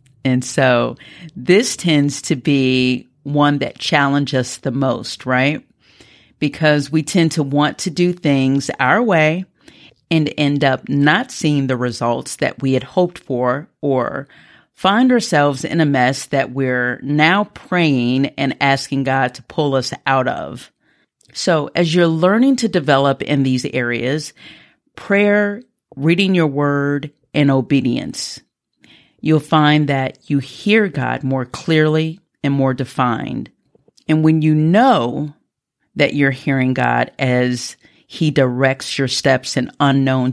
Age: 40-59